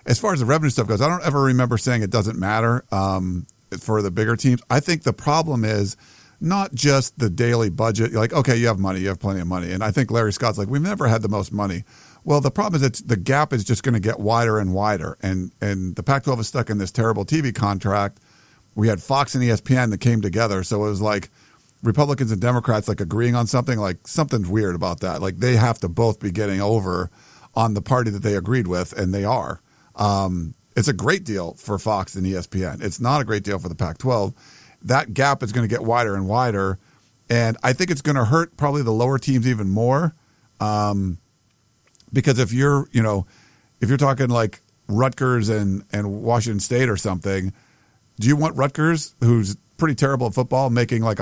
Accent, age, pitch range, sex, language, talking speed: American, 50-69, 105-130 Hz, male, English, 220 wpm